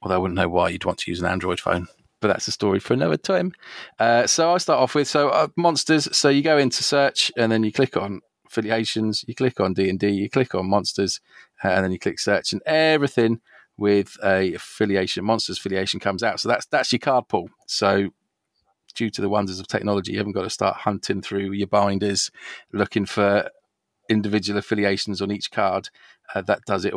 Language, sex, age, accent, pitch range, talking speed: English, male, 30-49, British, 95-120 Hz, 210 wpm